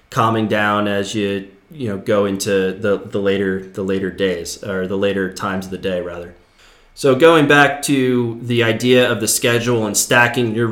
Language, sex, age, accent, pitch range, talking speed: English, male, 30-49, American, 105-125 Hz, 190 wpm